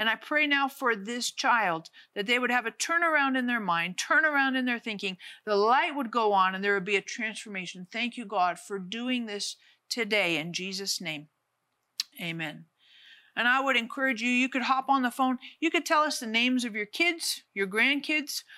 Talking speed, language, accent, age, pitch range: 205 wpm, English, American, 50-69, 205-270 Hz